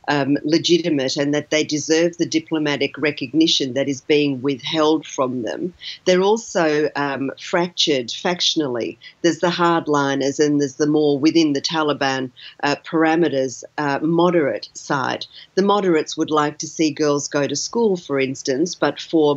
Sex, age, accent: female, 50-69, Australian